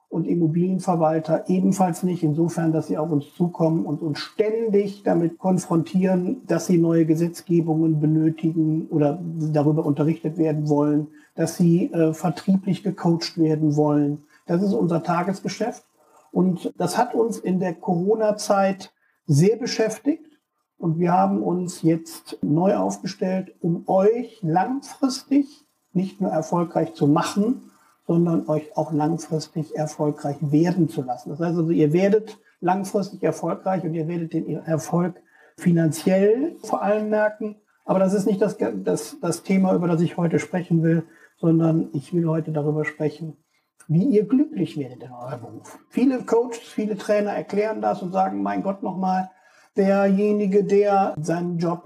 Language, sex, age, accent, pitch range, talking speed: German, male, 60-79, German, 155-195 Hz, 145 wpm